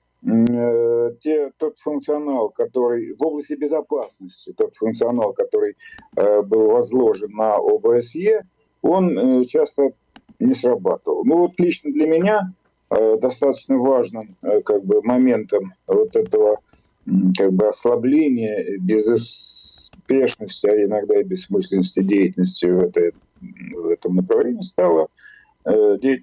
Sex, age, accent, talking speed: male, 50-69, native, 115 wpm